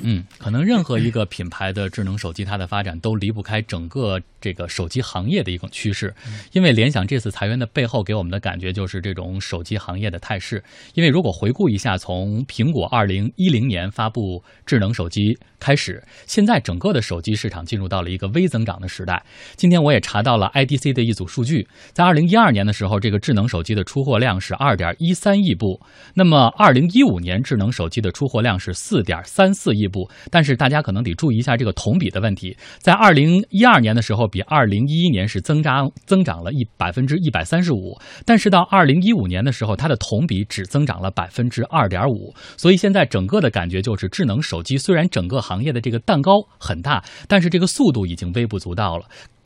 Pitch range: 95-140 Hz